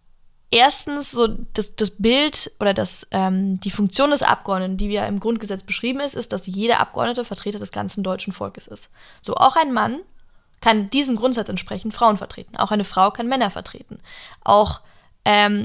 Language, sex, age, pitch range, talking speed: German, female, 10-29, 200-235 Hz, 175 wpm